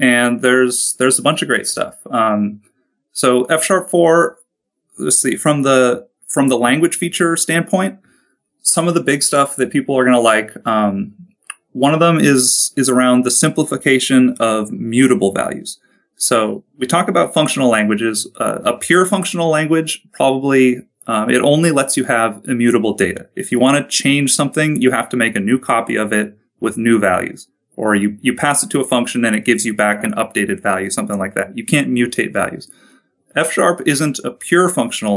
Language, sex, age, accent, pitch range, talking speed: English, male, 30-49, American, 115-155 Hz, 190 wpm